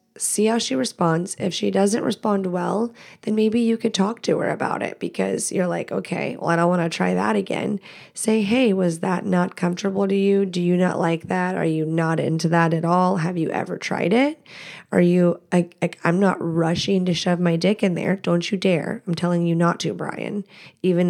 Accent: American